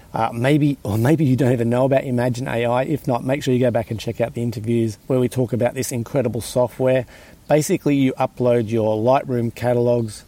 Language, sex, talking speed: English, male, 210 wpm